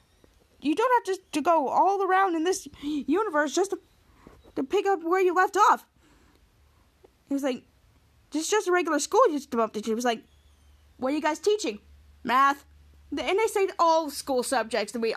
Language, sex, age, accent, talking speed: English, female, 20-39, American, 200 wpm